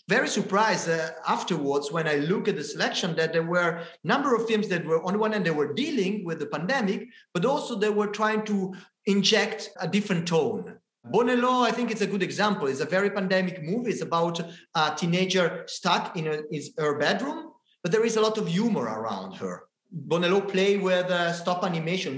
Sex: male